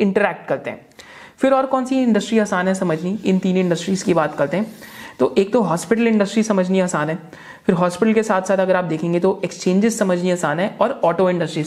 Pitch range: 165-215 Hz